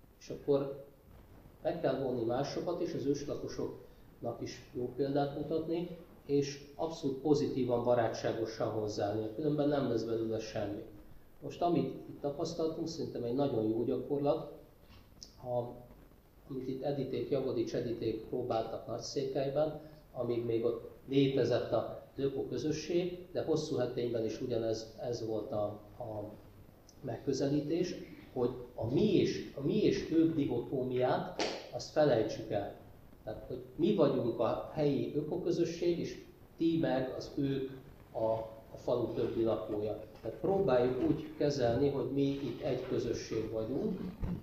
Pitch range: 110-150 Hz